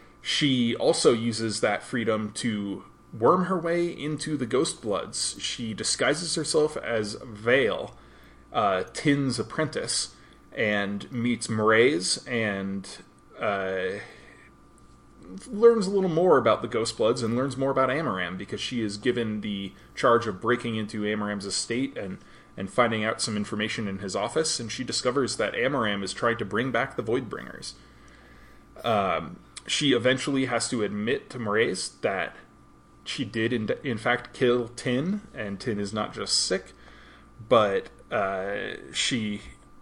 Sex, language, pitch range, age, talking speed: male, English, 105-135 Hz, 20-39, 145 wpm